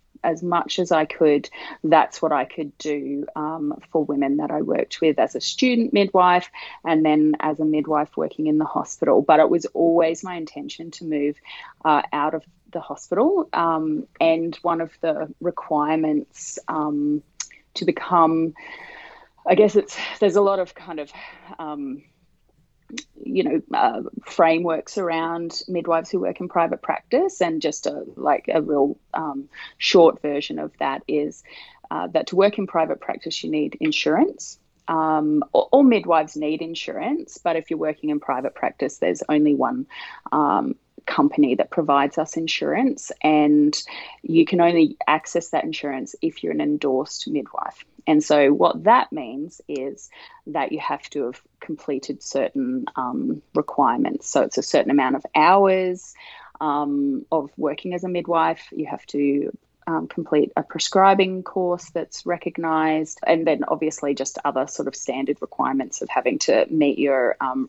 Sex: female